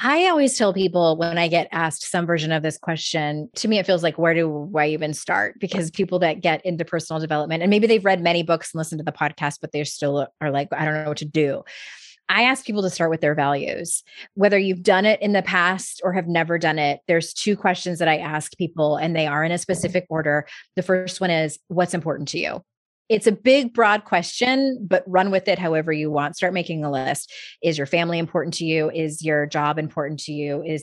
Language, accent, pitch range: English, American, 155-190 Hz